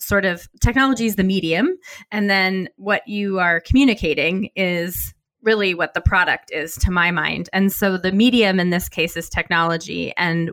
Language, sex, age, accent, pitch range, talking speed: English, female, 20-39, American, 170-205 Hz, 175 wpm